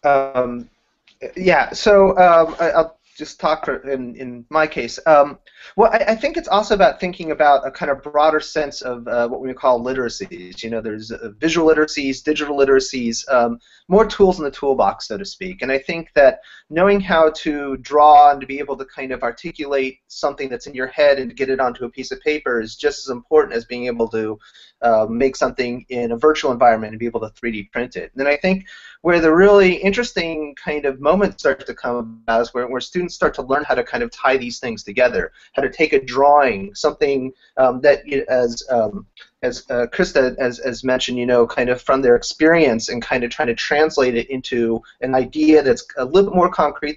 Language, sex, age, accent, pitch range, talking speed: English, male, 30-49, American, 125-160 Hz, 215 wpm